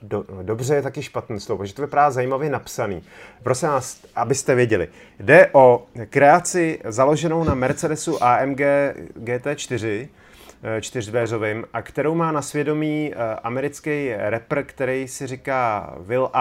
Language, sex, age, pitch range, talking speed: Czech, male, 30-49, 115-140 Hz, 125 wpm